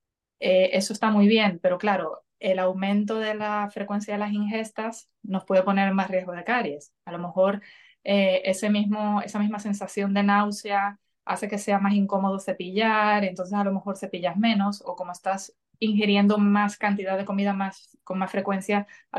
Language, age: Spanish, 20-39